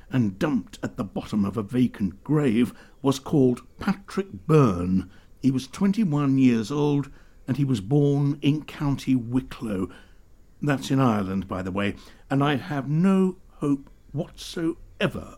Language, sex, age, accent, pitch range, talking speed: English, male, 60-79, British, 105-155 Hz, 145 wpm